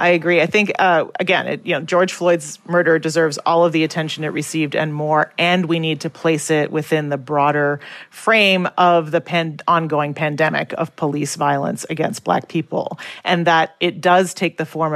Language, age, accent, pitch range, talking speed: English, 40-59, American, 155-175 Hz, 195 wpm